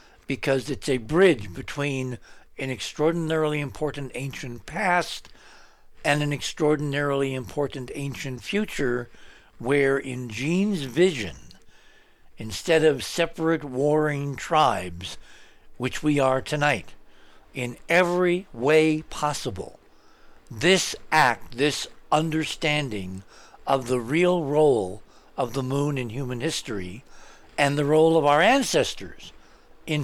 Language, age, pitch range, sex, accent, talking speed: English, 60-79, 120-160 Hz, male, American, 110 wpm